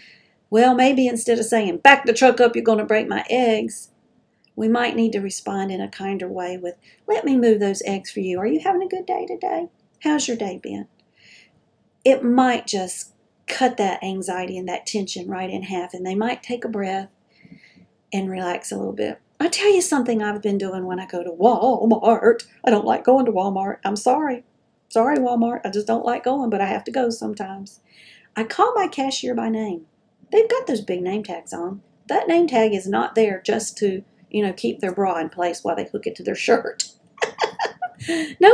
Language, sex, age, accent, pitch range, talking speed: English, female, 40-59, American, 195-270 Hz, 210 wpm